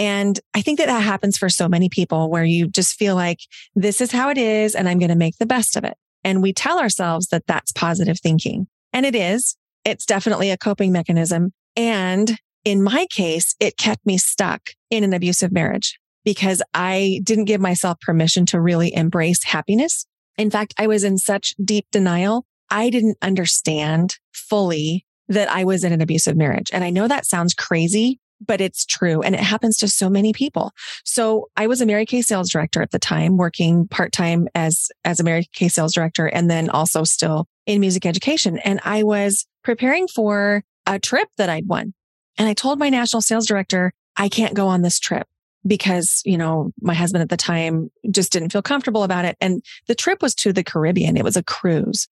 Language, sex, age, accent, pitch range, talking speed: English, female, 30-49, American, 175-215 Hz, 200 wpm